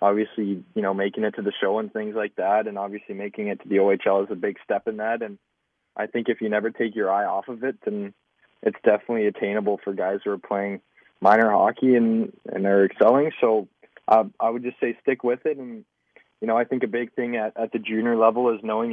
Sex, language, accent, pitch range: male, English, American, 105-120 Hz